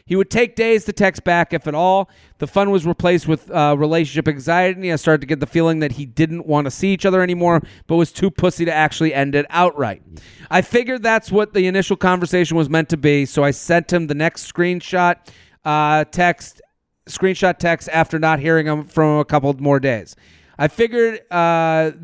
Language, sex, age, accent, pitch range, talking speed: English, male, 30-49, American, 150-180 Hz, 205 wpm